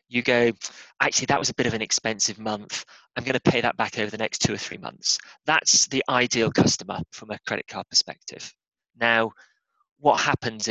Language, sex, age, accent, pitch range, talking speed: English, male, 30-49, British, 110-135 Hz, 200 wpm